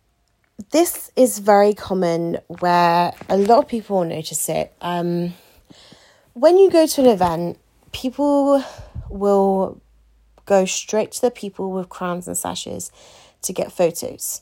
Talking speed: 135 wpm